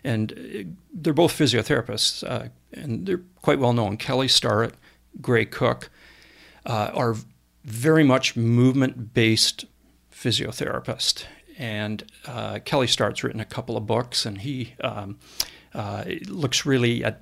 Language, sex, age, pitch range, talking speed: English, male, 50-69, 110-135 Hz, 125 wpm